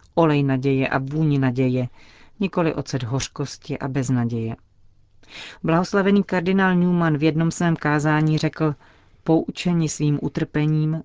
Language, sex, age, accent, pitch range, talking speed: Czech, female, 40-59, native, 135-160 Hz, 115 wpm